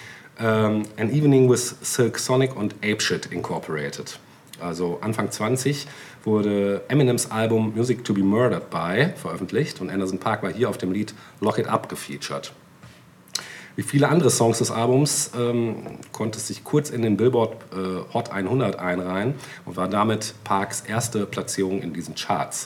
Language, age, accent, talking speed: German, 40-59, German, 150 wpm